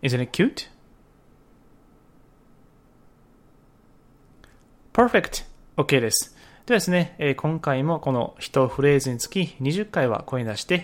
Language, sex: Japanese, male